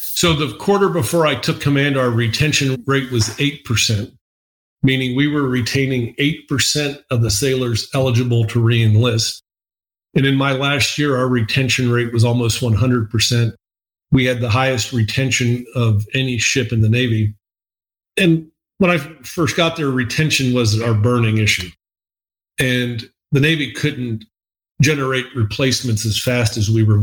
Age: 40-59